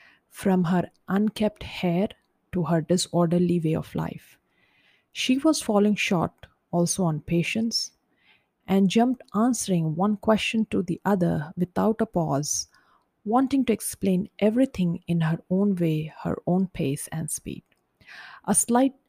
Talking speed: 135 wpm